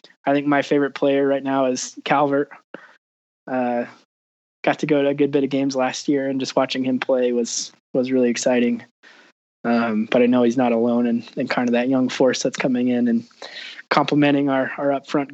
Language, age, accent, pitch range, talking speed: English, 20-39, American, 125-160 Hz, 200 wpm